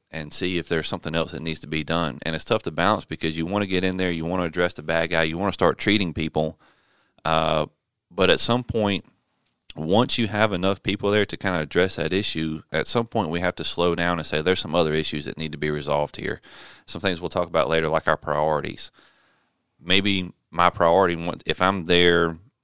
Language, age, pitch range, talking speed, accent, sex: English, 30-49, 80-95 Hz, 235 wpm, American, male